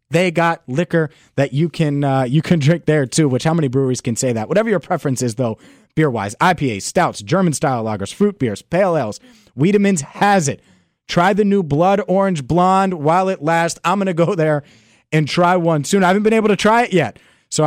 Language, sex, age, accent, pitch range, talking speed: English, male, 30-49, American, 130-175 Hz, 215 wpm